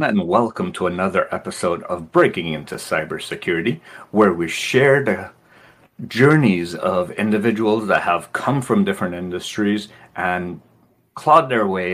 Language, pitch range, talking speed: English, 90-135 Hz, 130 wpm